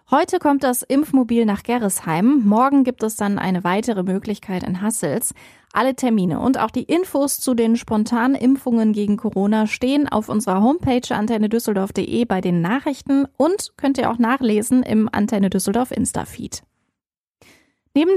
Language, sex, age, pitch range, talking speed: German, female, 20-39, 210-260 Hz, 150 wpm